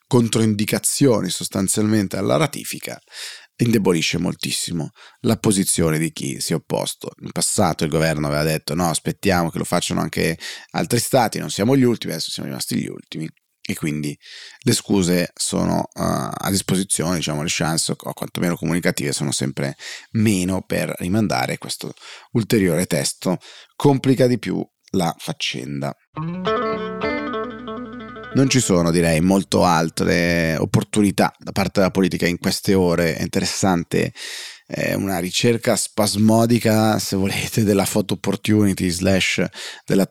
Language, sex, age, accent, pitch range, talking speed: Italian, male, 30-49, native, 85-115 Hz, 130 wpm